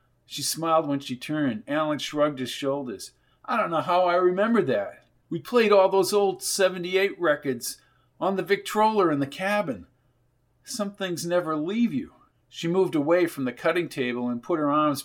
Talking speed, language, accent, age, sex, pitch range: 180 wpm, English, American, 50-69, male, 135-180 Hz